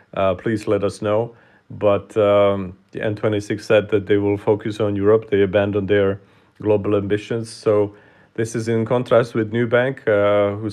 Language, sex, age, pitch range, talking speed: English, male, 40-59, 100-110 Hz, 175 wpm